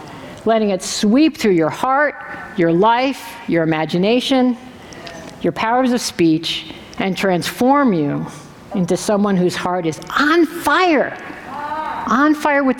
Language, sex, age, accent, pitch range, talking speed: English, female, 60-79, American, 180-245 Hz, 125 wpm